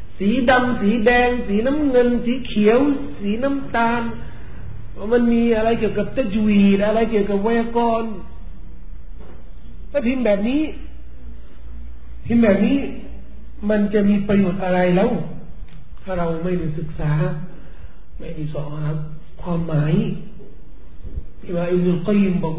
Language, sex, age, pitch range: Thai, male, 50-69, 160-230 Hz